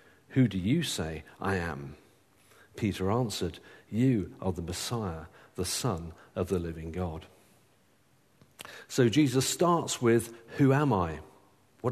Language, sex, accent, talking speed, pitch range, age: English, male, British, 130 wpm, 95-130 Hz, 50-69